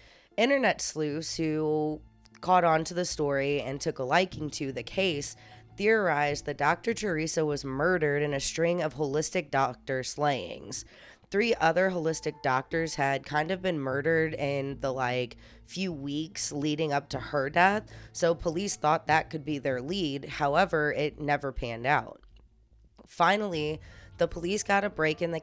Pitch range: 135-165 Hz